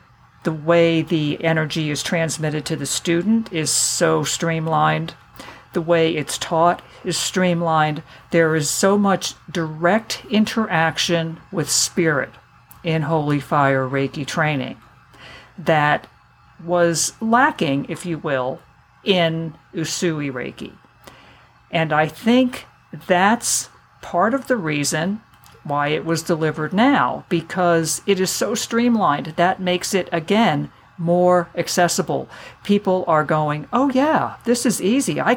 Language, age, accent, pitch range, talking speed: English, 50-69, American, 155-185 Hz, 125 wpm